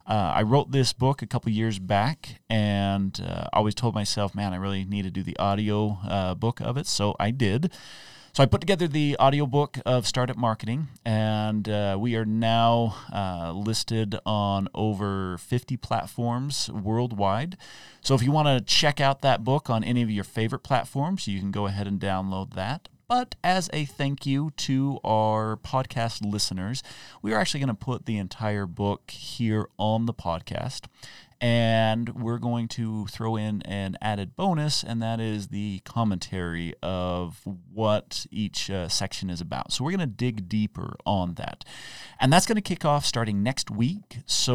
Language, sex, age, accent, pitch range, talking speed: English, male, 30-49, American, 100-135 Hz, 180 wpm